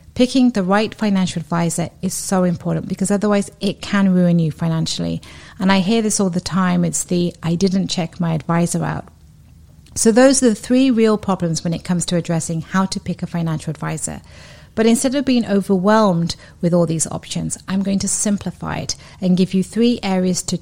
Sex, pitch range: female, 170-205 Hz